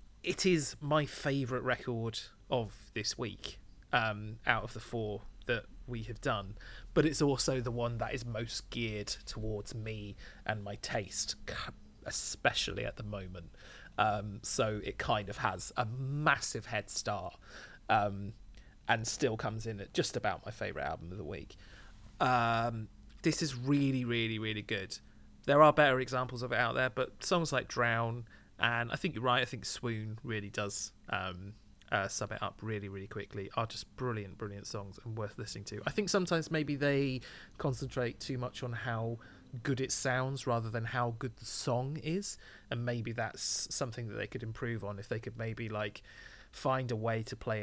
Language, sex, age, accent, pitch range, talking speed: English, male, 30-49, British, 105-125 Hz, 180 wpm